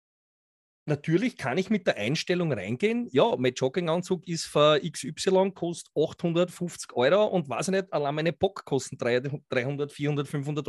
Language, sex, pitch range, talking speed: German, male, 150-195 Hz, 150 wpm